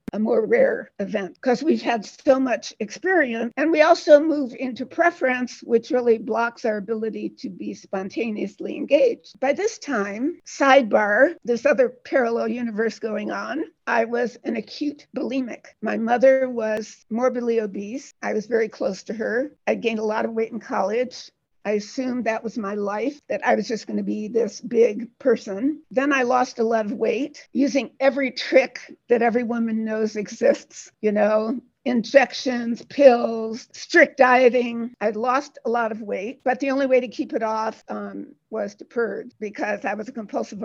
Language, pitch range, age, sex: English, 220-275 Hz, 60-79, female